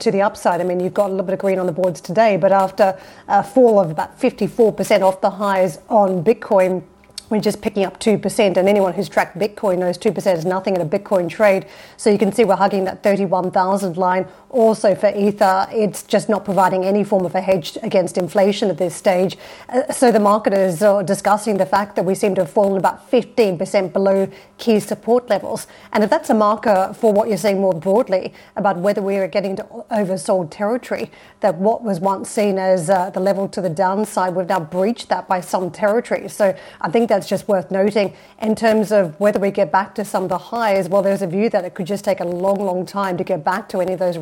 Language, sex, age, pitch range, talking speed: English, female, 30-49, 185-210 Hz, 230 wpm